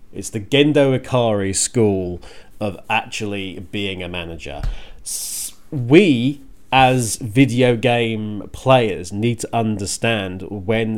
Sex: male